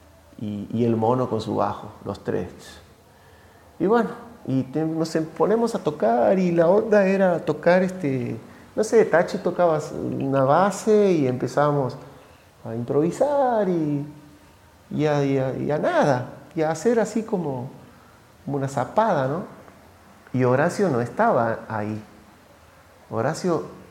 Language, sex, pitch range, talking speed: Spanish, male, 115-165 Hz, 140 wpm